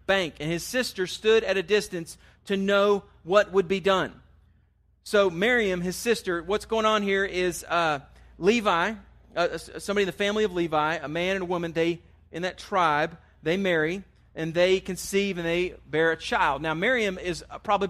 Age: 40-59